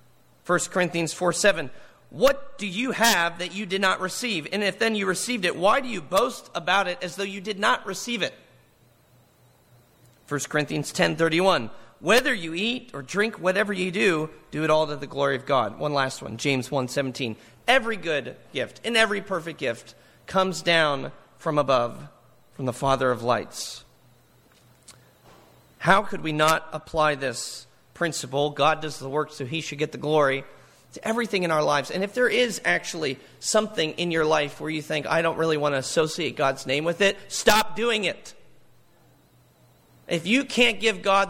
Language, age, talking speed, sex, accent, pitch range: English, 40-59, 180 wpm, male, American, 150-215 Hz